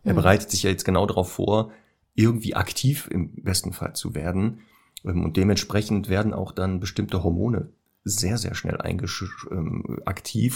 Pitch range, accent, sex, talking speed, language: 90-110 Hz, German, male, 155 wpm, German